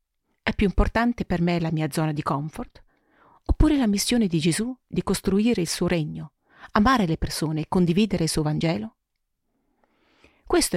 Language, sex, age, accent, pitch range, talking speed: Italian, female, 40-59, native, 165-220 Hz, 160 wpm